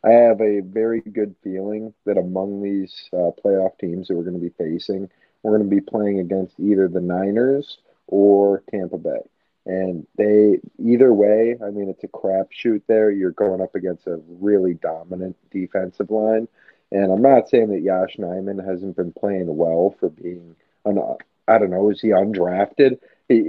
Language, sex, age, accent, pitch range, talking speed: English, male, 40-59, American, 90-105 Hz, 180 wpm